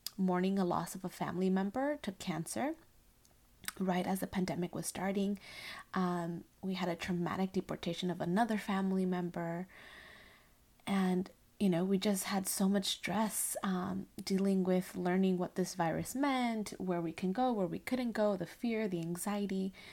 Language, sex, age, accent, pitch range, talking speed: English, female, 20-39, American, 180-210 Hz, 165 wpm